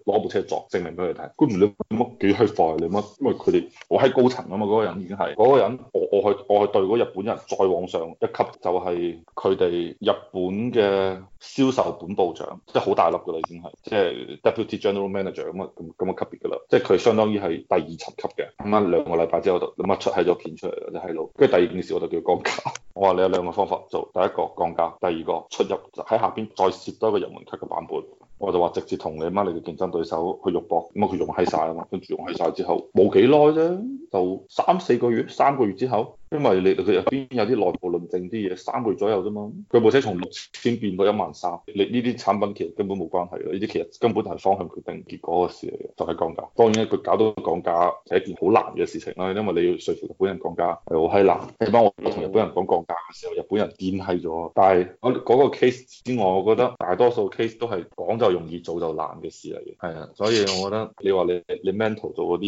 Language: Chinese